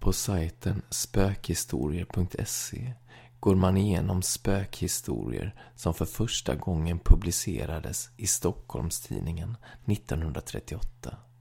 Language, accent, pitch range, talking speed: Swedish, native, 90-120 Hz, 80 wpm